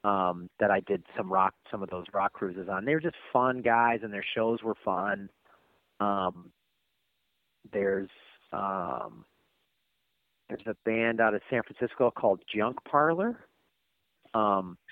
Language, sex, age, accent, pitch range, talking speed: English, male, 30-49, American, 100-125 Hz, 145 wpm